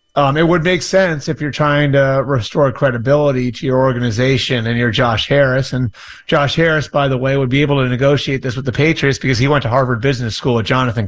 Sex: male